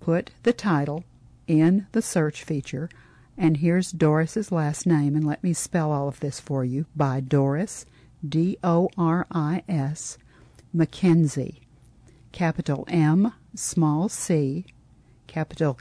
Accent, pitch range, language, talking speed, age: American, 140-175 Hz, English, 115 wpm, 50-69